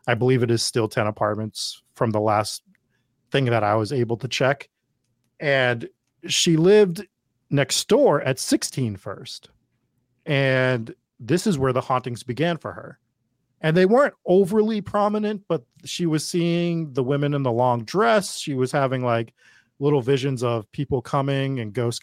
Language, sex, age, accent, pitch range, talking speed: English, male, 40-59, American, 120-145 Hz, 165 wpm